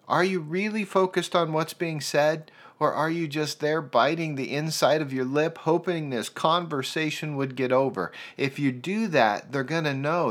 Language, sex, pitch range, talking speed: English, male, 135-175 Hz, 185 wpm